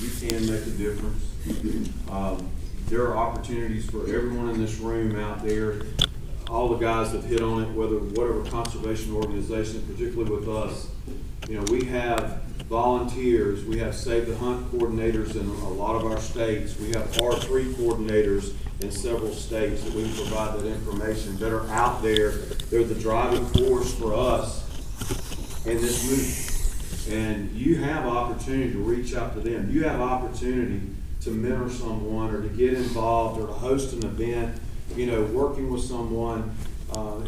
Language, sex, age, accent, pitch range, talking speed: English, male, 40-59, American, 110-125 Hz, 165 wpm